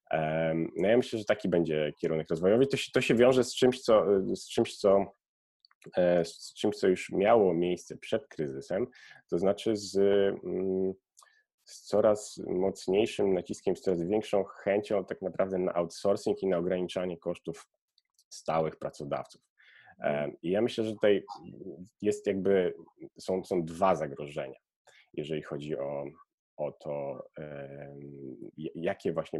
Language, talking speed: Polish, 115 wpm